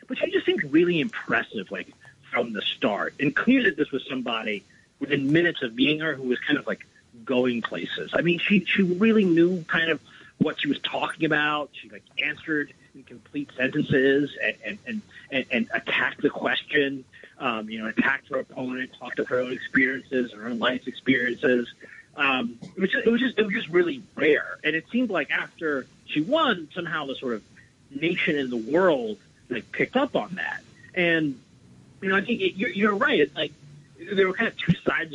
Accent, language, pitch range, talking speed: American, English, 130-210 Hz, 205 wpm